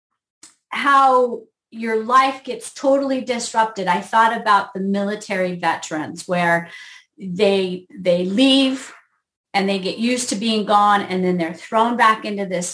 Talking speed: 140 wpm